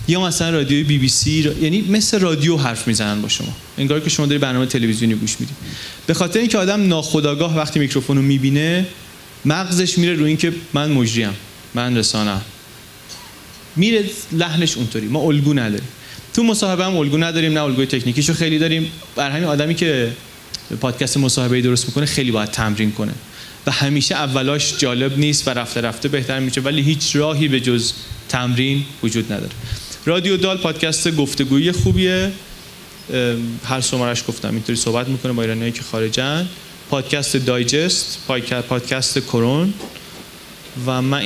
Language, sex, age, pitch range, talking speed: Persian, male, 30-49, 120-155 Hz, 155 wpm